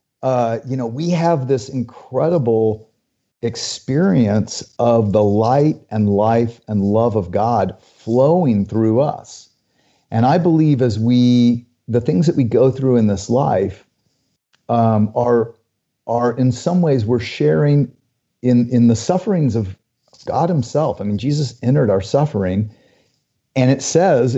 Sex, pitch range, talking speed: male, 115-145 Hz, 145 wpm